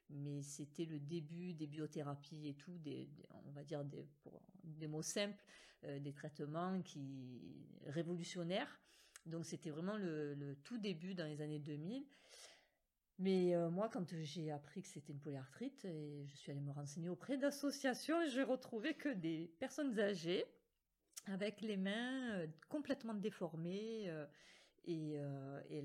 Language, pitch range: French, 145-185 Hz